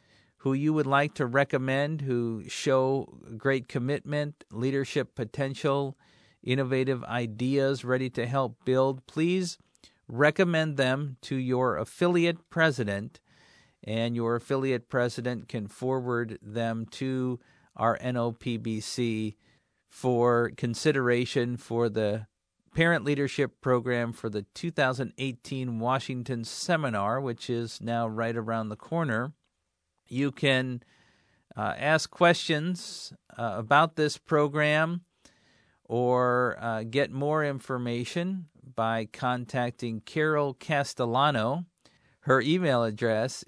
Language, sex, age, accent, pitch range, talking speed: English, male, 50-69, American, 120-150 Hz, 105 wpm